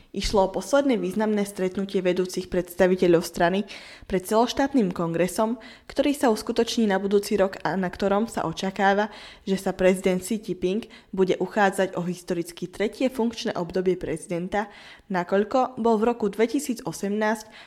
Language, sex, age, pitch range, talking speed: Slovak, female, 20-39, 180-225 Hz, 135 wpm